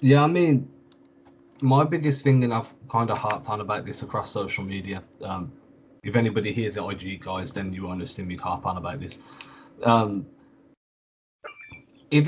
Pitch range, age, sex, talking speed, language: 105-130 Hz, 20-39, male, 165 wpm, English